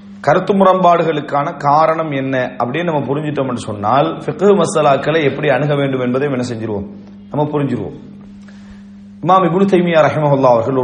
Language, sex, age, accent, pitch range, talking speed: English, male, 40-59, Indian, 130-180 Hz, 120 wpm